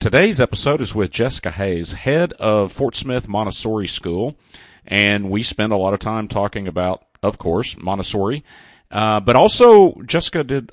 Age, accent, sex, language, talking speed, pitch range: 40-59, American, male, English, 160 wpm, 95-120 Hz